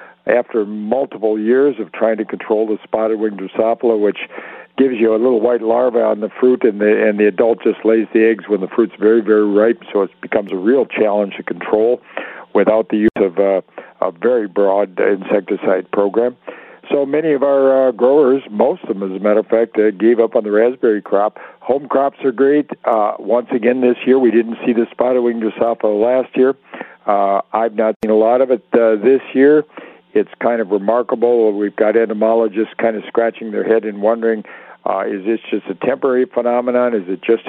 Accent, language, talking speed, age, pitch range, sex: American, English, 205 wpm, 50-69, 110-130 Hz, male